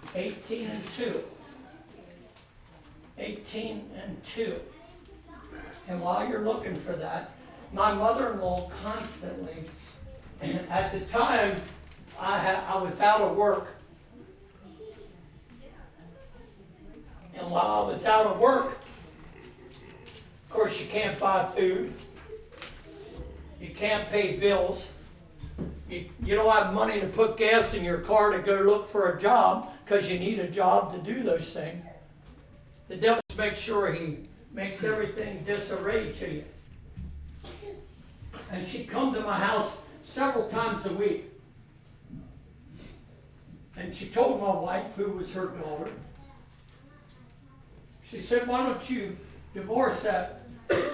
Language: English